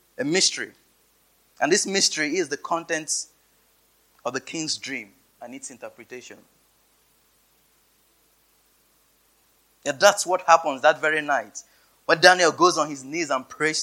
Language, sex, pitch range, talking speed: English, male, 140-175 Hz, 130 wpm